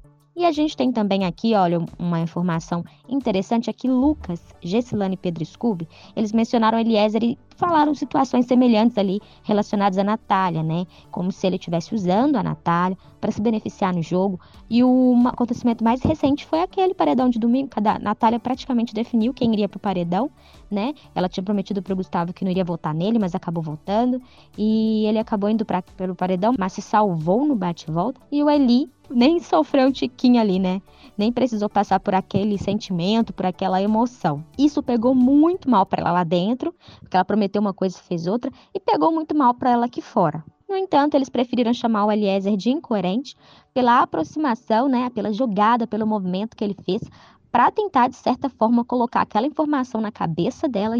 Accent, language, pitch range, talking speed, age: Brazilian, Portuguese, 190-250 Hz, 185 wpm, 20-39